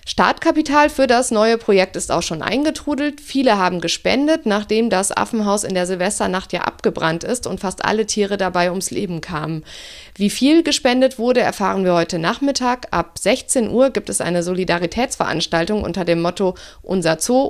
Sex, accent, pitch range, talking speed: female, German, 175-235 Hz, 170 wpm